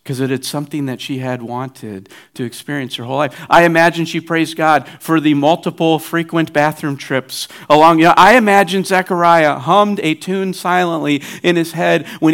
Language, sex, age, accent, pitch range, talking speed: English, male, 50-69, American, 125-175 Hz, 170 wpm